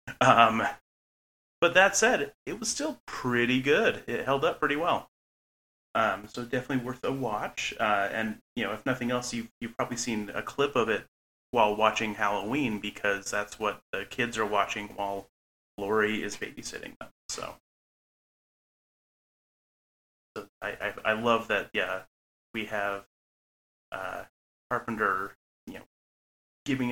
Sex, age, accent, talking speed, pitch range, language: male, 30-49, American, 140 wpm, 95-125 Hz, English